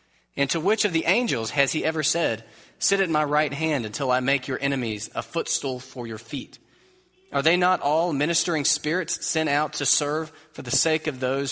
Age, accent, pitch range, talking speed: 30-49, American, 110-150 Hz, 210 wpm